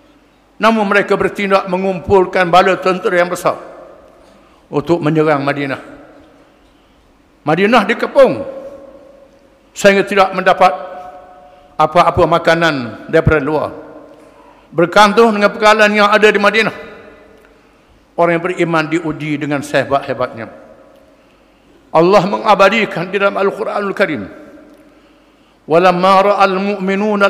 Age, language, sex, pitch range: 50-69, English, male, 160-210 Hz